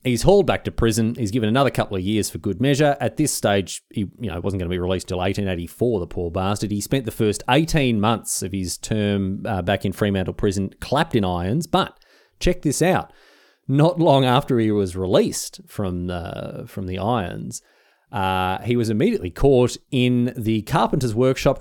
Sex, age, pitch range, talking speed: male, 30-49, 100-140 Hz, 190 wpm